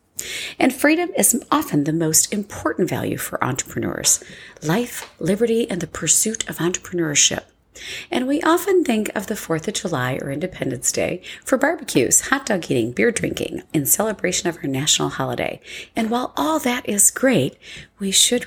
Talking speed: 160 wpm